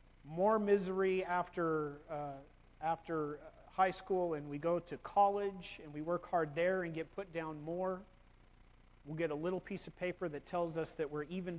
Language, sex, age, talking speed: English, male, 40-59, 180 wpm